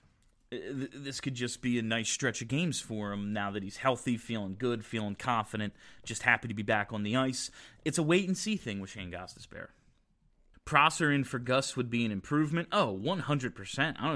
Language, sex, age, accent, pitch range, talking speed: English, male, 30-49, American, 120-175 Hz, 195 wpm